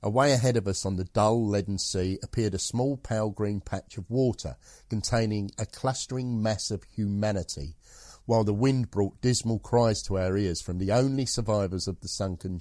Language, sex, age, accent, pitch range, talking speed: English, male, 50-69, British, 95-115 Hz, 185 wpm